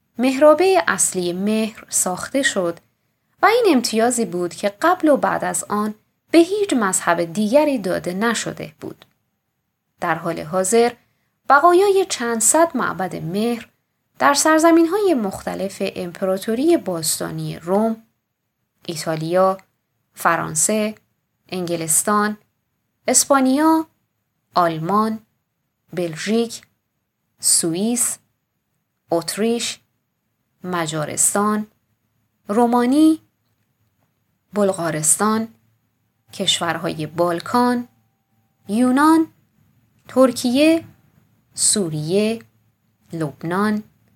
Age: 20-39